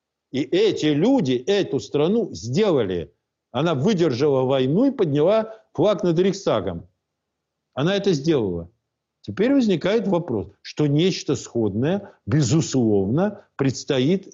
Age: 50-69